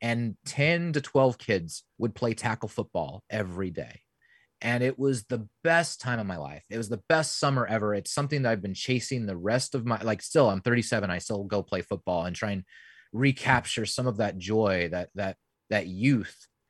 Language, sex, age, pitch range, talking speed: English, male, 30-49, 110-155 Hz, 205 wpm